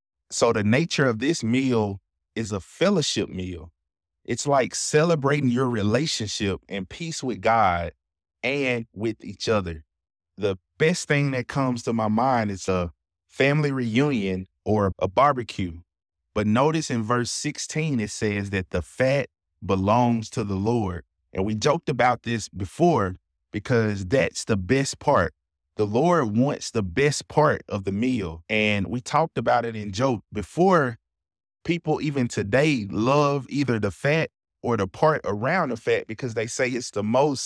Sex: male